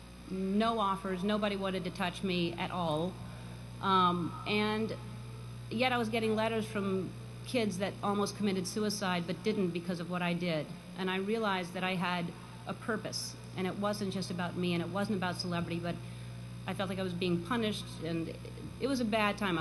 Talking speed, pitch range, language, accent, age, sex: 190 wpm, 165-210 Hz, English, American, 40-59, female